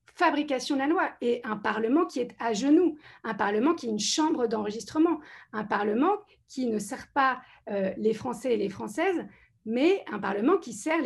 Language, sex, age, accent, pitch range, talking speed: French, female, 40-59, French, 225-315 Hz, 190 wpm